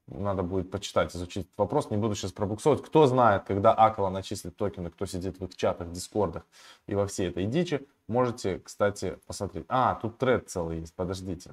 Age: 20-39